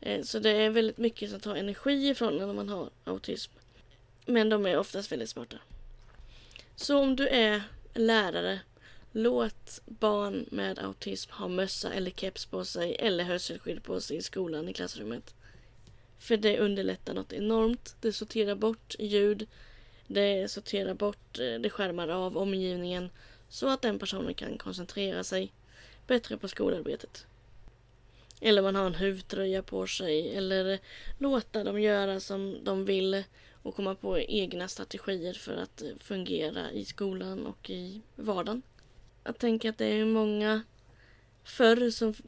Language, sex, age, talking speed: Swedish, female, 20-39, 145 wpm